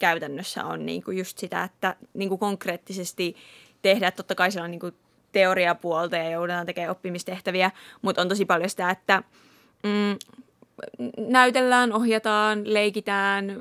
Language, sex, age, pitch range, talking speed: Finnish, female, 20-39, 185-210 Hz, 130 wpm